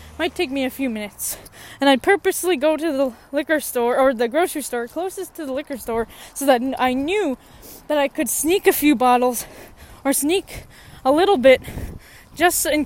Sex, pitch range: female, 255-335 Hz